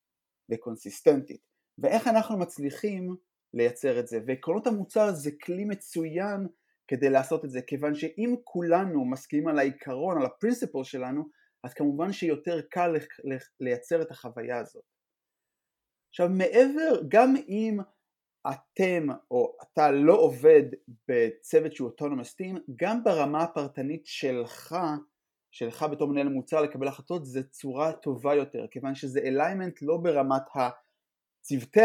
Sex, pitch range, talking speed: male, 135-190 Hz, 120 wpm